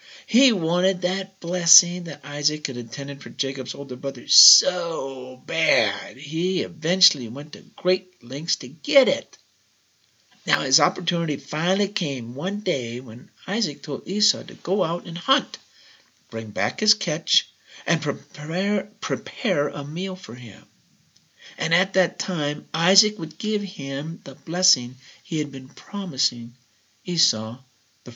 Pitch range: 120-185 Hz